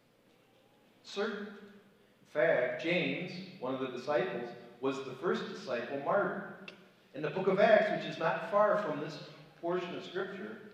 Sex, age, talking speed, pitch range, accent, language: male, 40-59, 150 wpm, 130-195 Hz, American, English